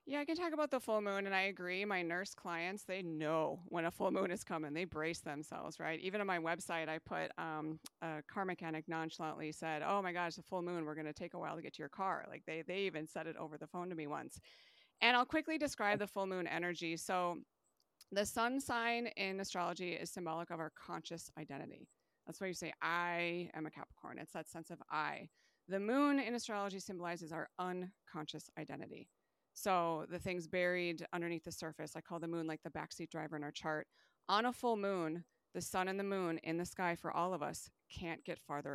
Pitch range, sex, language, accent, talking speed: 160-200 Hz, female, English, American, 225 wpm